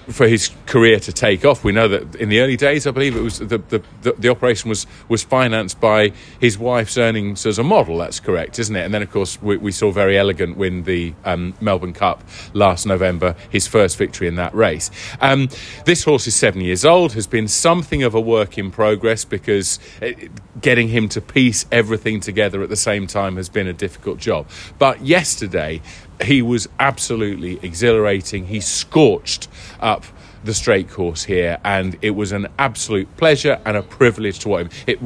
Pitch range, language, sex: 95-115 Hz, English, male